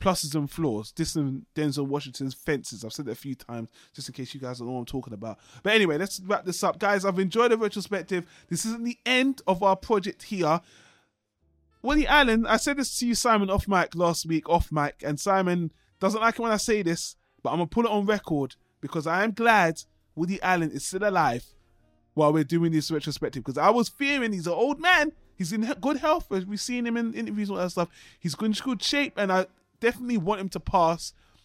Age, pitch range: 20-39, 160-215 Hz